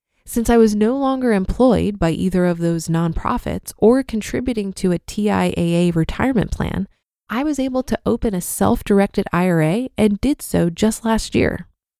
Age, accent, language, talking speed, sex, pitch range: 20-39, American, English, 160 wpm, female, 175-235 Hz